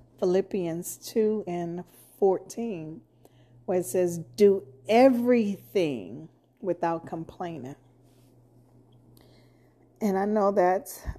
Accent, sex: American, female